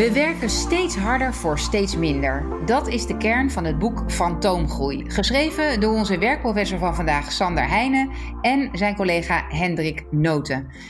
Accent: Dutch